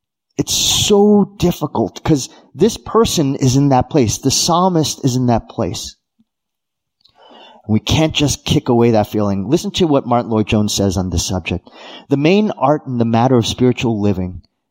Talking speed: 165 wpm